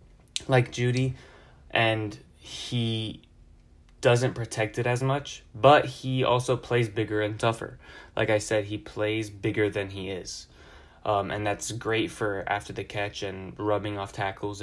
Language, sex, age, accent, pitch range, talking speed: English, male, 10-29, American, 105-120 Hz, 150 wpm